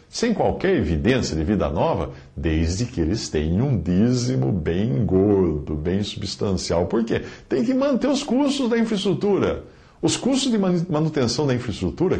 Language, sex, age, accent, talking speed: Portuguese, male, 60-79, Brazilian, 150 wpm